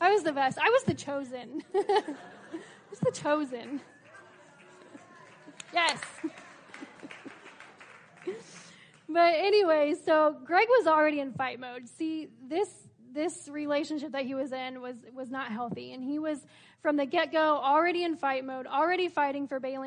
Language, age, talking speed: English, 10-29, 145 wpm